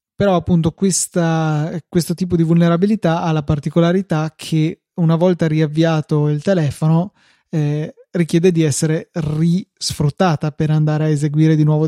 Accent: native